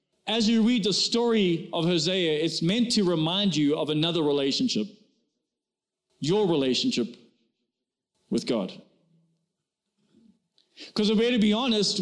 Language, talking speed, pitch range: English, 125 wpm, 190-230 Hz